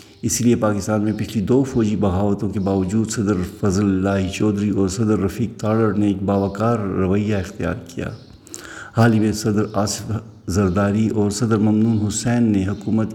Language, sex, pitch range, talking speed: Urdu, male, 100-110 Hz, 160 wpm